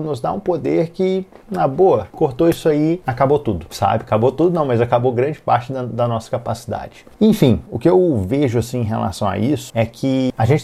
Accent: Brazilian